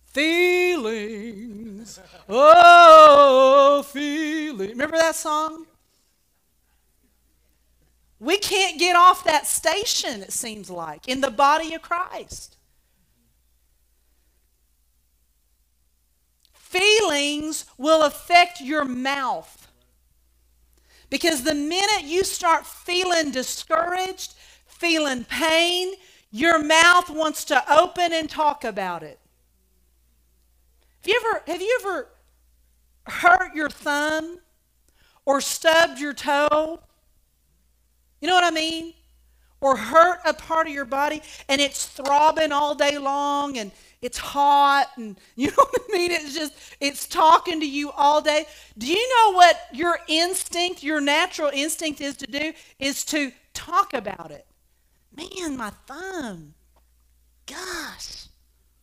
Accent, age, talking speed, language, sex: American, 40-59, 110 wpm, English, female